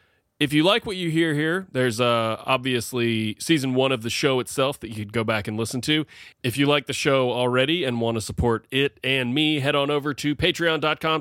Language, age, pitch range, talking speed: English, 30-49, 110-145 Hz, 225 wpm